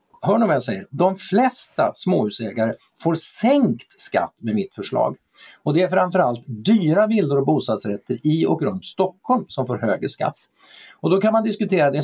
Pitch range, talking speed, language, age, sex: 135-200 Hz, 145 wpm, Swedish, 50-69, male